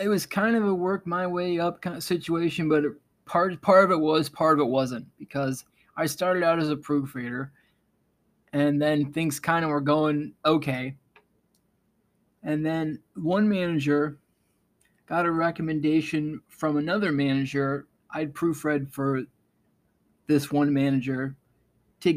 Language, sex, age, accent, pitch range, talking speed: English, male, 20-39, American, 140-165 Hz, 145 wpm